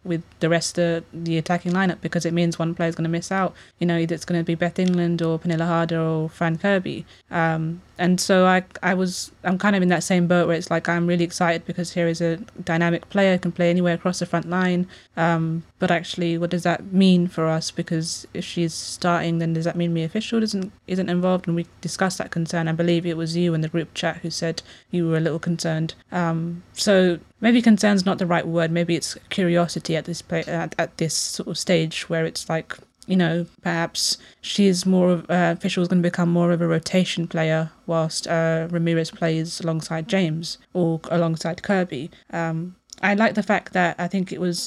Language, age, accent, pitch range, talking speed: English, 20-39, British, 165-180 Hz, 220 wpm